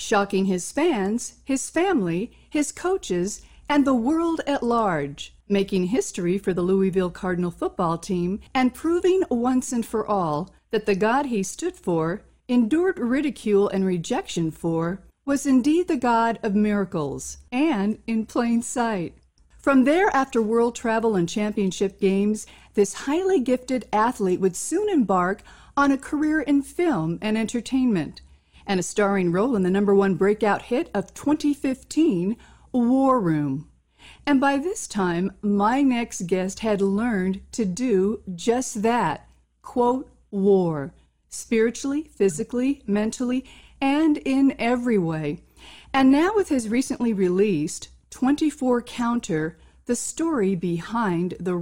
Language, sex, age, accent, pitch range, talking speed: English, female, 50-69, American, 190-270 Hz, 135 wpm